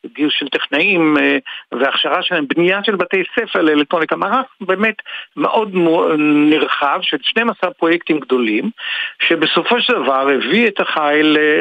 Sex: male